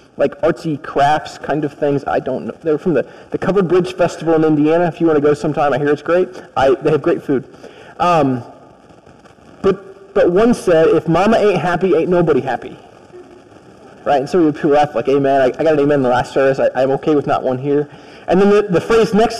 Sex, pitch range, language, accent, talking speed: male, 145-190 Hz, English, American, 230 wpm